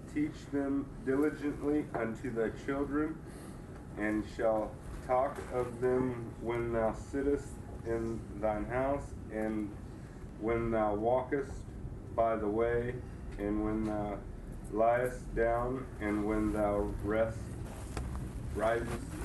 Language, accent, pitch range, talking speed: English, American, 105-125 Hz, 105 wpm